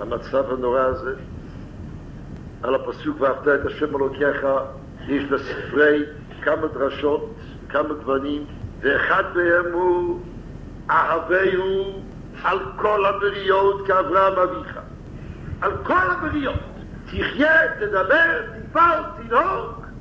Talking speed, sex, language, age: 95 wpm, male, Hebrew, 60-79